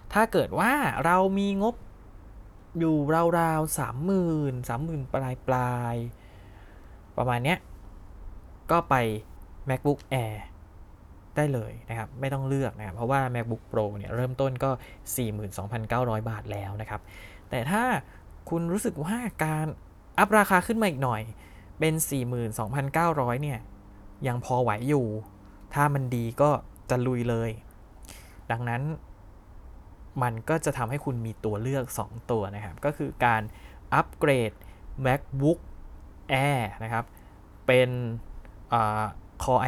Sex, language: male, Thai